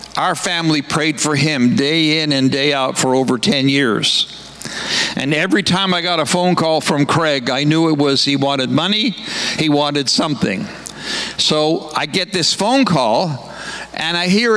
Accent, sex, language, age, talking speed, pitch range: American, male, English, 60-79, 175 wpm, 140-185 Hz